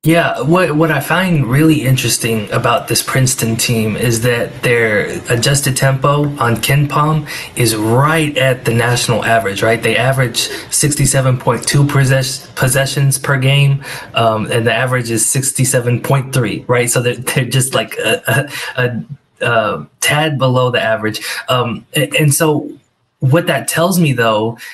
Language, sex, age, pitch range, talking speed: English, male, 20-39, 115-135 Hz, 150 wpm